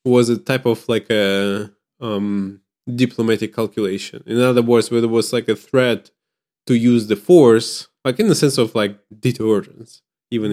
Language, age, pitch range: English, 20-39, 105-125 Hz